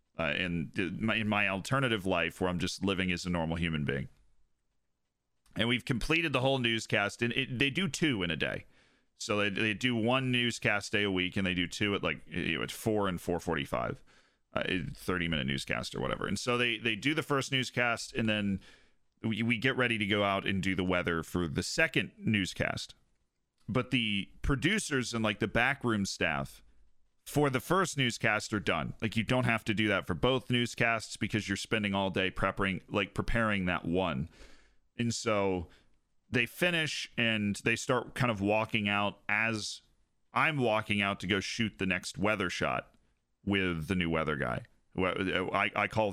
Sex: male